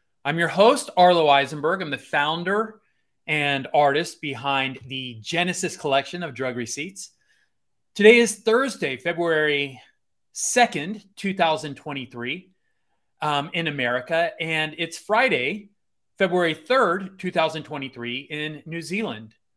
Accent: American